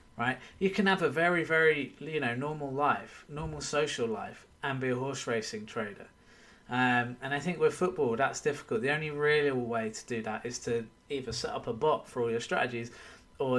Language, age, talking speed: English, 20-39, 210 wpm